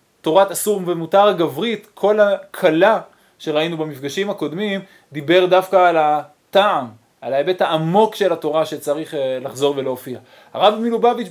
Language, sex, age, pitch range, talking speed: Hebrew, male, 20-39, 150-205 Hz, 120 wpm